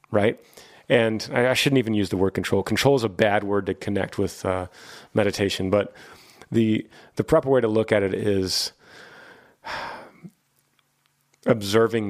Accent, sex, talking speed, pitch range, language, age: American, male, 150 wpm, 105-135 Hz, English, 30-49